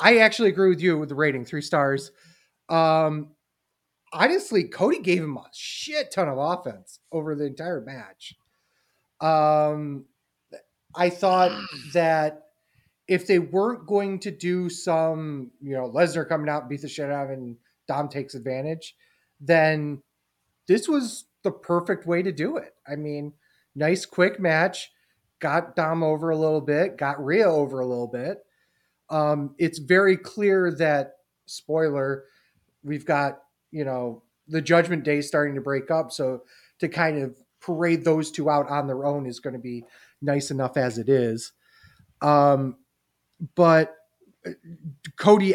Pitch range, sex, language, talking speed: 135-170 Hz, male, English, 155 wpm